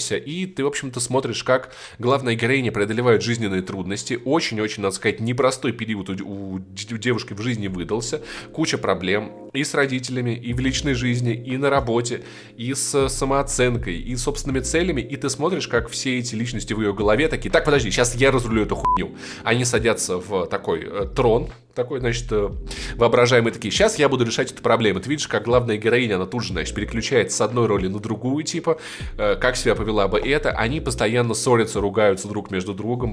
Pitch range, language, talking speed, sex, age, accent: 110-135 Hz, Russian, 185 wpm, male, 20-39, native